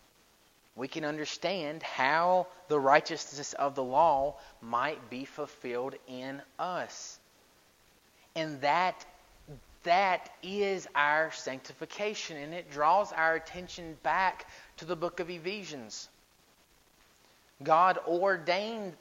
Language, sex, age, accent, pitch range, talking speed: English, male, 30-49, American, 155-210 Hz, 105 wpm